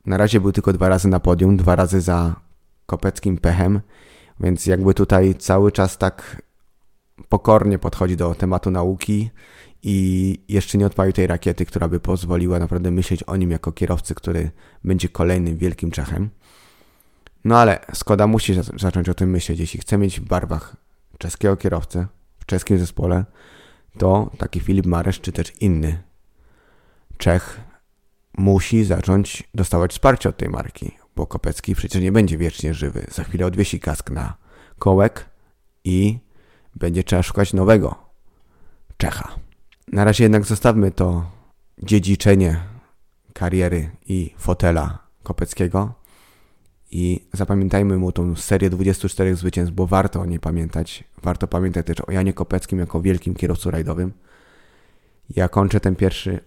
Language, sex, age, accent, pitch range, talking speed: Polish, male, 30-49, native, 85-100 Hz, 140 wpm